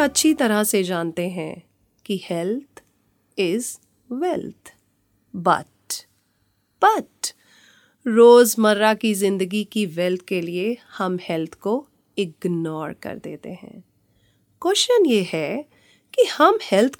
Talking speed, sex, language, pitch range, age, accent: 110 wpm, female, Hindi, 185-275 Hz, 30-49, native